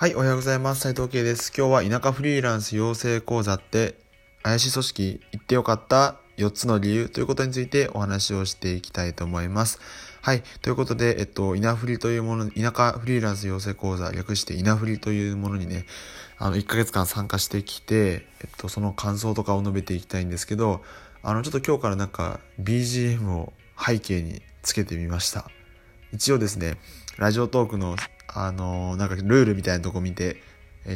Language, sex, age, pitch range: Japanese, male, 20-39, 95-115 Hz